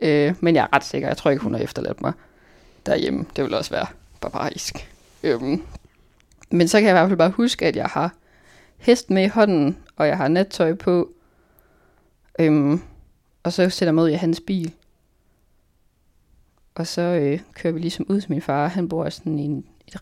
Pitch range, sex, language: 145-175 Hz, female, Danish